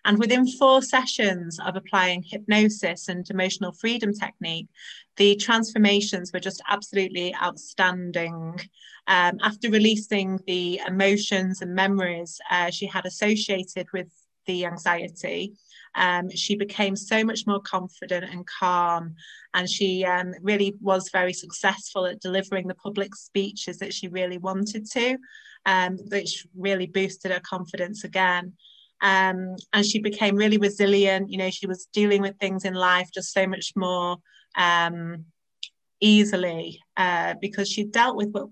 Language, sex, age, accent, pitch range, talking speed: English, female, 30-49, British, 185-205 Hz, 140 wpm